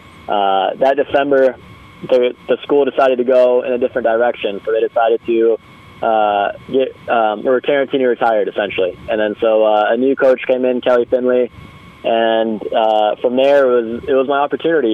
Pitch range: 110-130 Hz